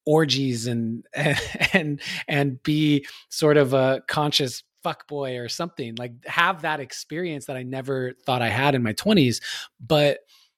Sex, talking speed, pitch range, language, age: male, 155 wpm, 125-145 Hz, English, 20-39